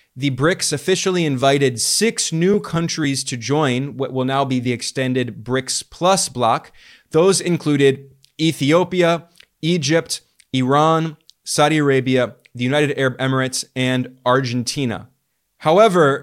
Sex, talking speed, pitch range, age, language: male, 120 wpm, 130-160 Hz, 20-39, English